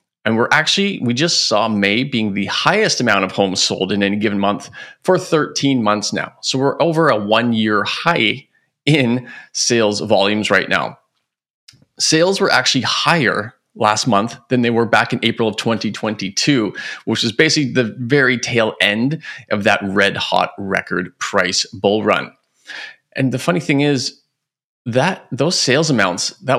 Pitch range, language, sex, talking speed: 105-135 Hz, English, male, 160 wpm